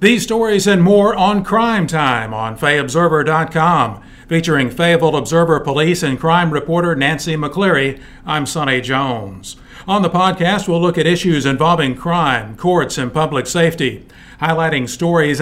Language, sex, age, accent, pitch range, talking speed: English, male, 50-69, American, 130-170 Hz, 140 wpm